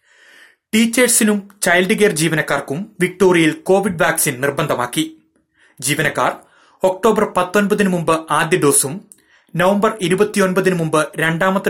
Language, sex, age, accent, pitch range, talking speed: Malayalam, male, 30-49, native, 135-170 Hz, 80 wpm